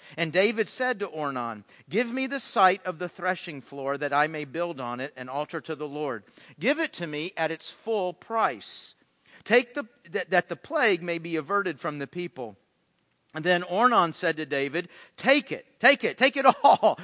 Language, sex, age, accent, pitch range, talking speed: English, male, 50-69, American, 155-230 Hz, 195 wpm